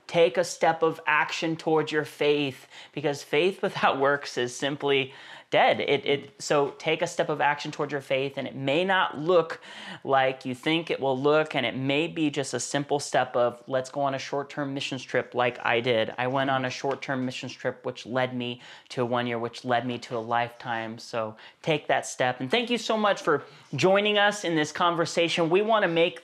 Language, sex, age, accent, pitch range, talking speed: English, male, 30-49, American, 140-165 Hz, 215 wpm